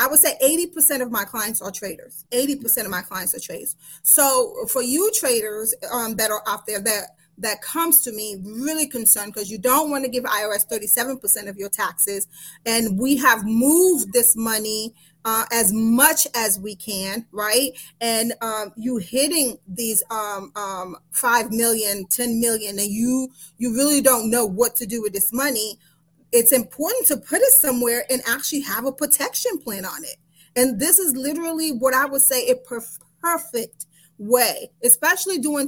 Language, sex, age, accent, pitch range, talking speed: English, female, 30-49, American, 215-270 Hz, 175 wpm